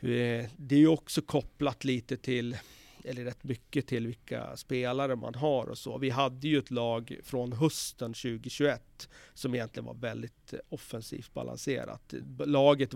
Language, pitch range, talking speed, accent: Swedish, 115-135 Hz, 145 wpm, native